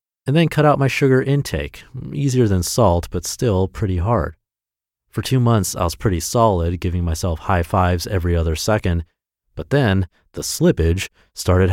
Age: 30-49